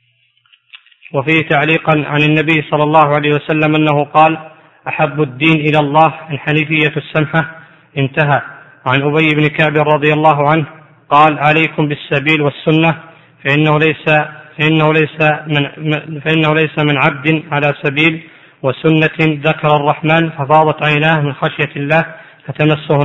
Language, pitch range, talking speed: Arabic, 150-160 Hz, 125 wpm